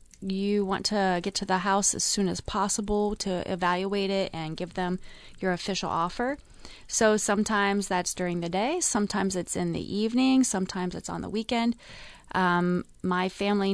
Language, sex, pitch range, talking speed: English, female, 185-210 Hz, 170 wpm